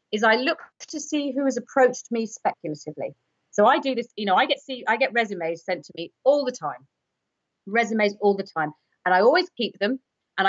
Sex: female